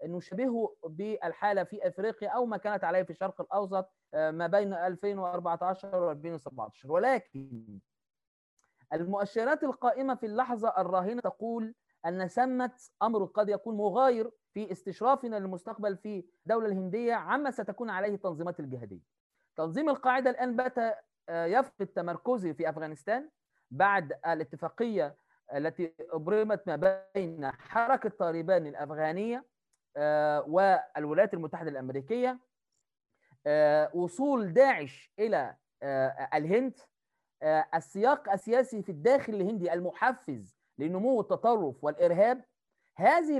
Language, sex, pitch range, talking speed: Arabic, male, 175-250 Hz, 100 wpm